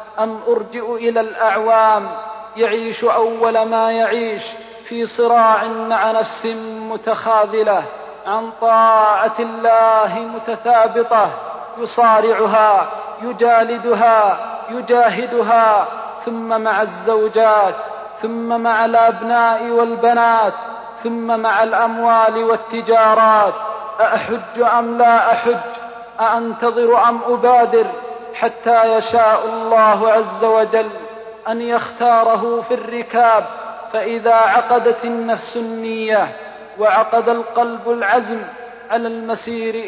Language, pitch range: Arabic, 220-235 Hz